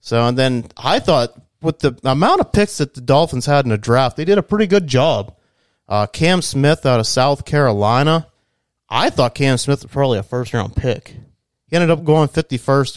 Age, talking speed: 30-49, 210 wpm